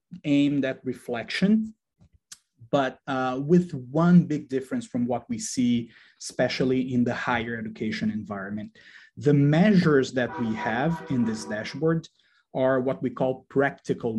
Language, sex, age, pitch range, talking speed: English, male, 30-49, 125-175 Hz, 135 wpm